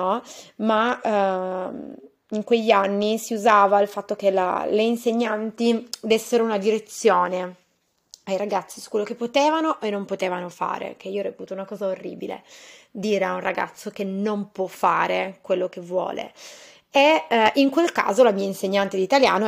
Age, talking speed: 20-39, 165 wpm